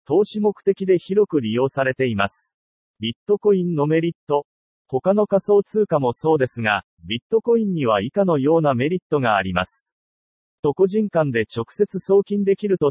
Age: 40-59